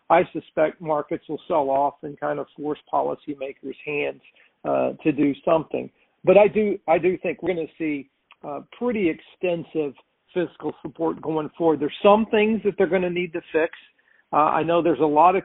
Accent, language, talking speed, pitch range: American, English, 195 wpm, 150-170 Hz